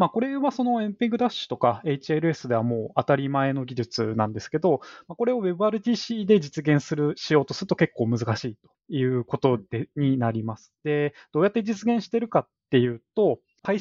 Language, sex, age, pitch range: Japanese, male, 20-39, 125-200 Hz